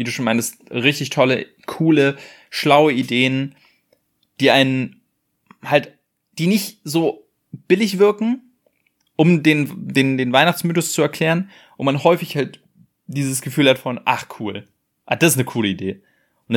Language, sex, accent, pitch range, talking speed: German, male, German, 120-150 Hz, 150 wpm